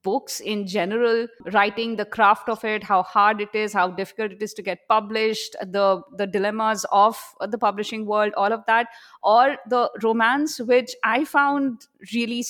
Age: 20-39